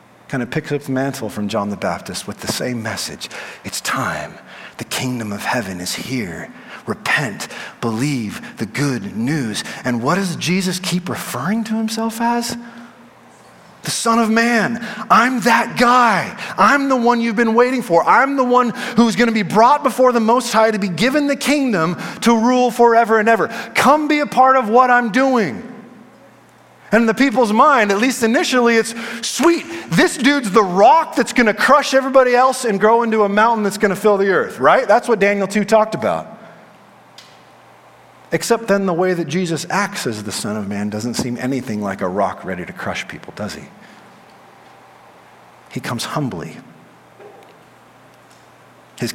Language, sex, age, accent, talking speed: English, male, 30-49, American, 180 wpm